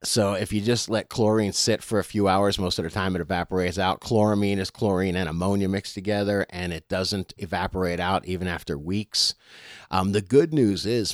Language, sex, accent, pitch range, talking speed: English, male, American, 90-105 Hz, 205 wpm